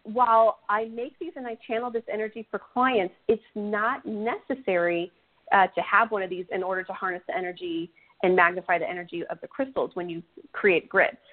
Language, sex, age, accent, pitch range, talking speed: English, female, 40-59, American, 180-250 Hz, 195 wpm